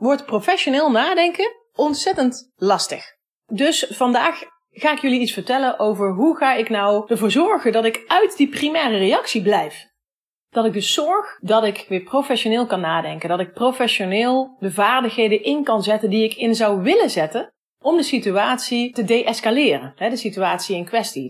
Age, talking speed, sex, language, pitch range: 30-49, 165 wpm, female, Dutch, 205-280 Hz